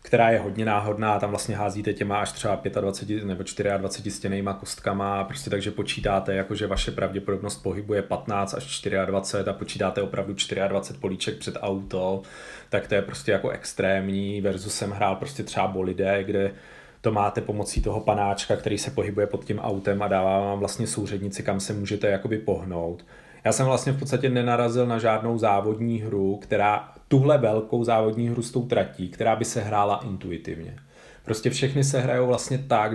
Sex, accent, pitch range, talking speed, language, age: male, native, 100-115 Hz, 175 wpm, Czech, 30-49